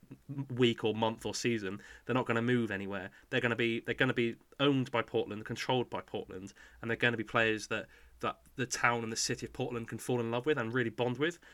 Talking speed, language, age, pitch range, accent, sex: 255 wpm, English, 20-39, 110-135 Hz, British, male